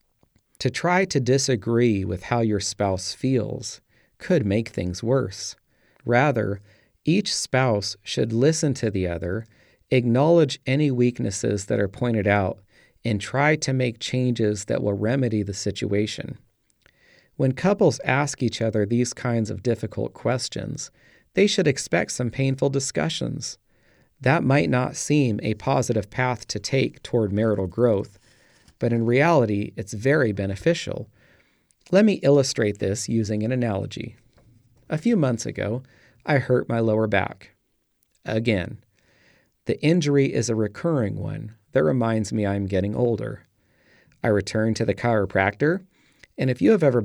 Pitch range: 105-135 Hz